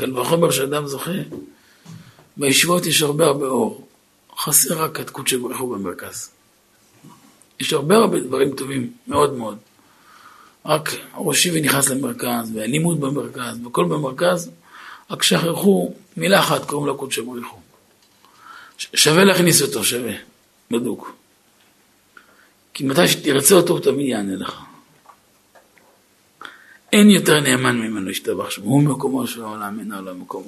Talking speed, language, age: 125 wpm, Hebrew, 50-69